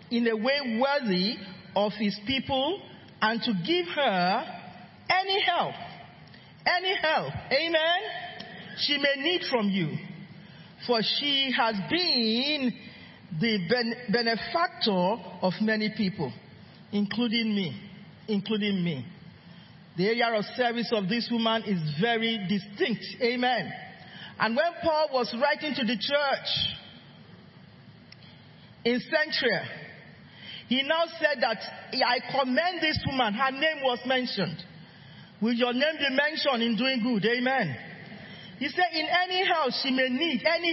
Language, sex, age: English, male, 40-59